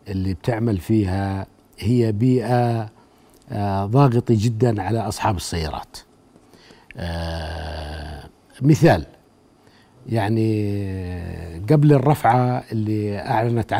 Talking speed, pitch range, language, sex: 80 wpm, 105-130 Hz, Arabic, male